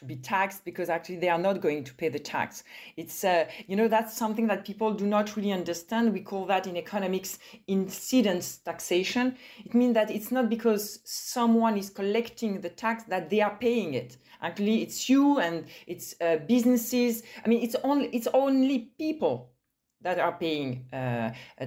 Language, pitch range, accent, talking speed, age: English, 170-235 Hz, French, 185 wpm, 40-59